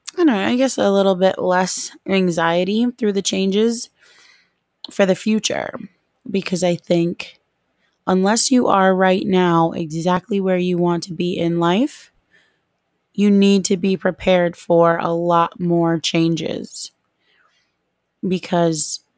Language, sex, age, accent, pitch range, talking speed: English, female, 20-39, American, 175-195 Hz, 125 wpm